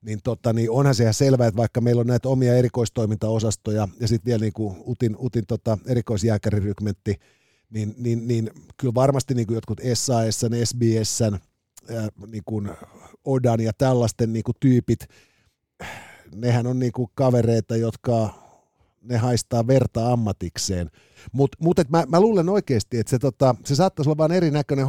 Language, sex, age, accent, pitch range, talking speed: Finnish, male, 50-69, native, 110-140 Hz, 150 wpm